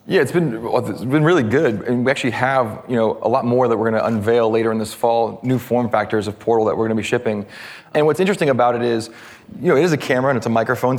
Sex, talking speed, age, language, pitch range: male, 290 wpm, 30-49, English, 115-135 Hz